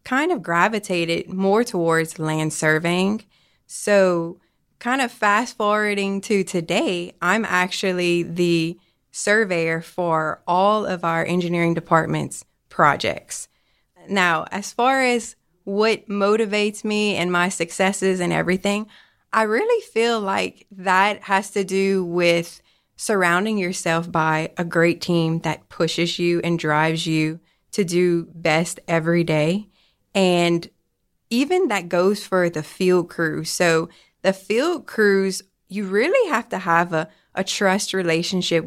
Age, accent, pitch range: 20-39, American, 170-205 Hz